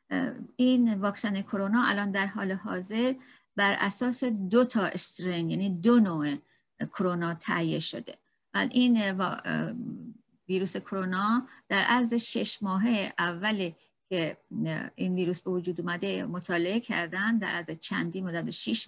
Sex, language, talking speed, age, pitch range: female, Persian, 130 wpm, 50-69, 190-240 Hz